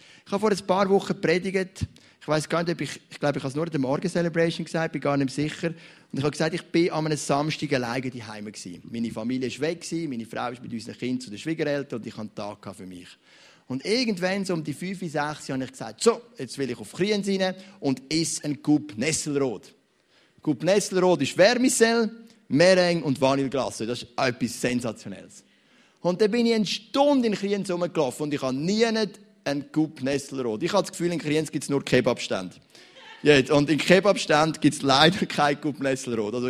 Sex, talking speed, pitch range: male, 205 wpm, 130-180 Hz